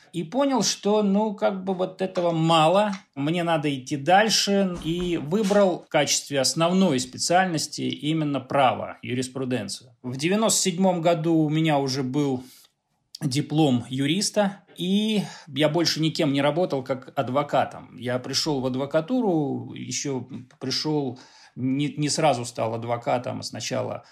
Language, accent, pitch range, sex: Russian, native, 135-190 Hz, male